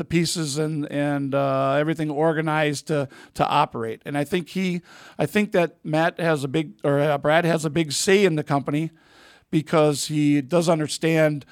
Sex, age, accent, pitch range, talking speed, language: male, 50-69, American, 145-170 Hz, 175 wpm, English